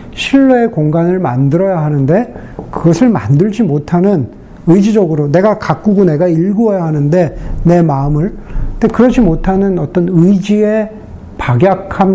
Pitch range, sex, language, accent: 145-175 Hz, male, Korean, native